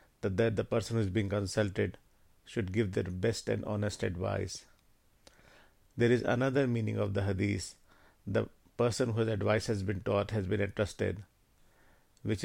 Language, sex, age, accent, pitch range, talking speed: English, male, 50-69, Indian, 100-115 Hz, 155 wpm